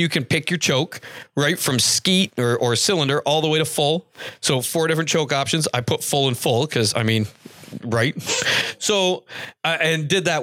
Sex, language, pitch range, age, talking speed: male, English, 125-170 Hz, 40-59, 200 wpm